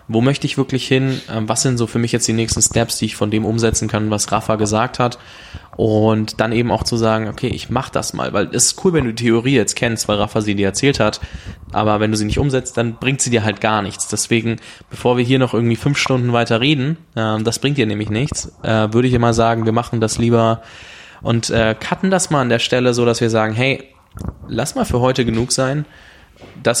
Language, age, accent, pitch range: German, 20-39, German, 110-125 Hz